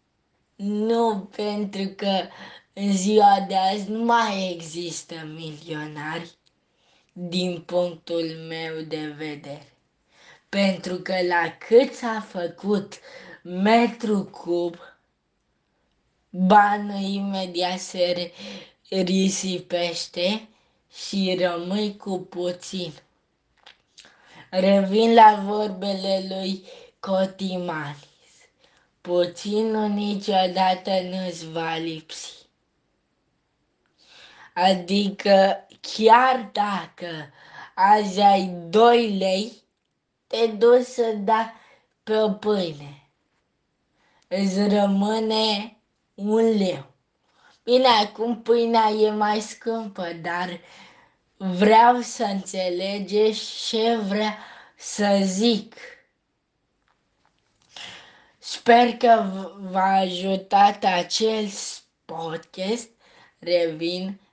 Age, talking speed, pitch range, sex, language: 20-39, 75 wpm, 175-215 Hz, female, Romanian